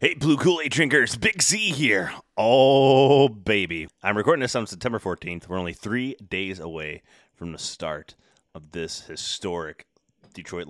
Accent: American